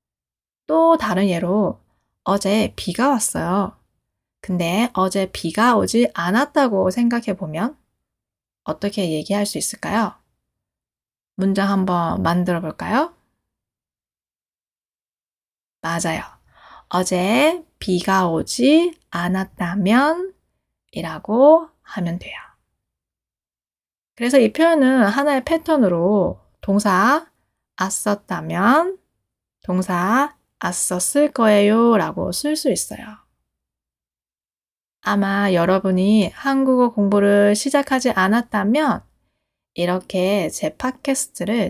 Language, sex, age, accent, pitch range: Korean, female, 20-39, native, 180-255 Hz